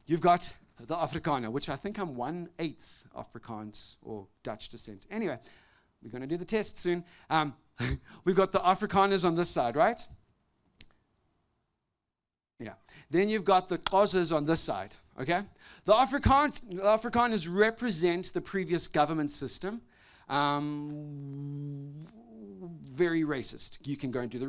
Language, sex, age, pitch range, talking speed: English, male, 40-59, 140-205 Hz, 140 wpm